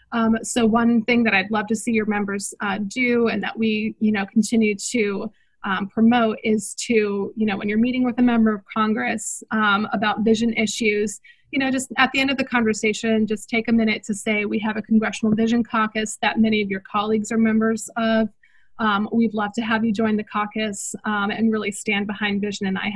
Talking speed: 220 wpm